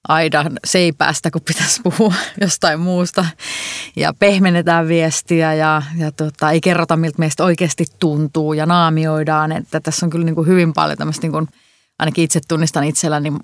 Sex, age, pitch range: female, 30-49, 150-175 Hz